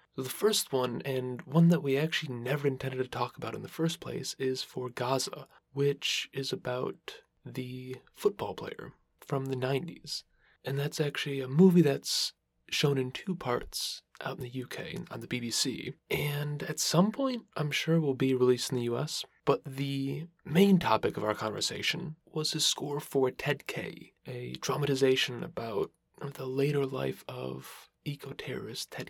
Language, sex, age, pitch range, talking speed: English, male, 20-39, 125-160 Hz, 165 wpm